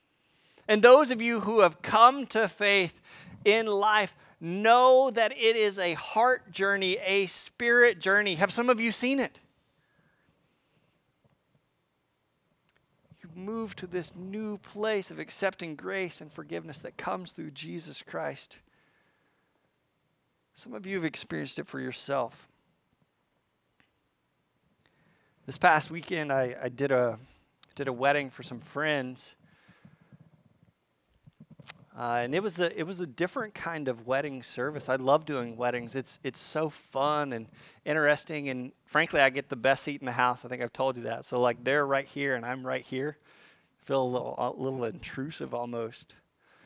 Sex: male